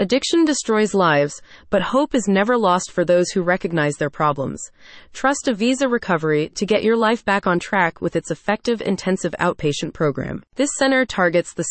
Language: English